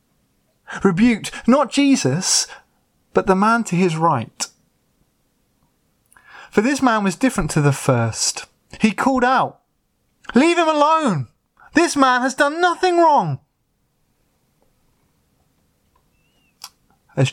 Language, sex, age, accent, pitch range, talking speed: English, male, 30-49, British, 135-185 Hz, 105 wpm